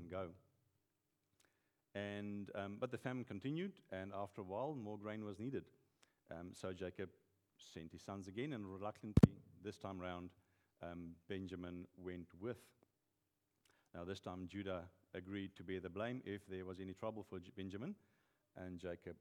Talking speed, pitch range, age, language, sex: 155 wpm, 95-120 Hz, 50-69, English, male